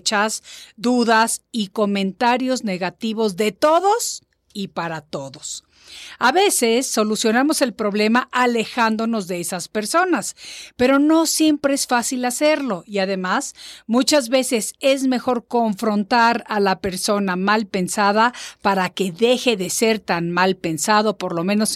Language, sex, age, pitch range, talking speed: Spanish, female, 50-69, 195-255 Hz, 130 wpm